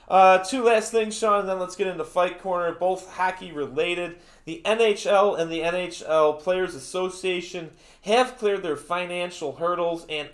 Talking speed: 155 wpm